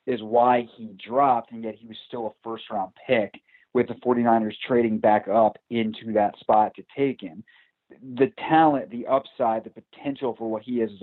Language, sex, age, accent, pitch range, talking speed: English, male, 30-49, American, 105-125 Hz, 190 wpm